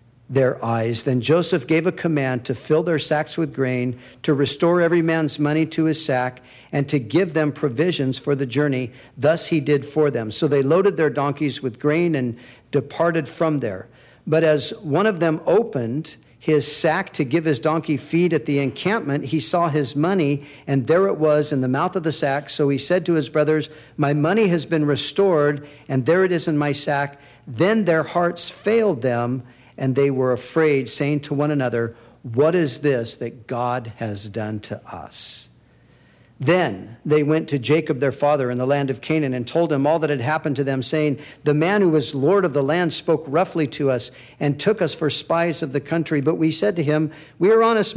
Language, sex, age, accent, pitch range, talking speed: English, male, 50-69, American, 135-165 Hz, 205 wpm